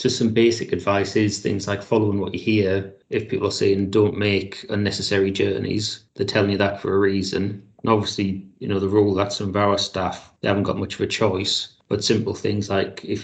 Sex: male